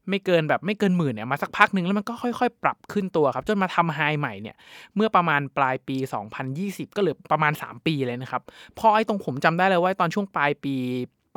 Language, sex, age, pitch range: Thai, male, 20-39, 140-185 Hz